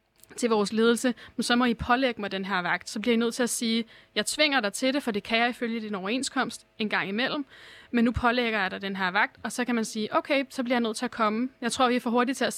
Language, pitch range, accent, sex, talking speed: Danish, 215-250 Hz, native, female, 305 wpm